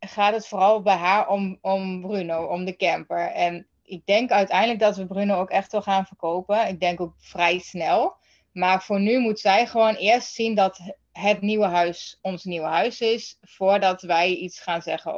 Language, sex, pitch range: Dutch, female, 175-210 Hz